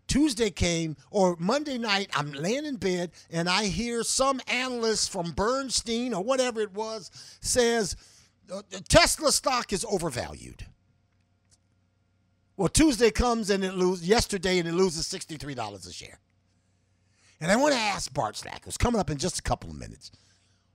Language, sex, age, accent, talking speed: English, male, 50-69, American, 155 wpm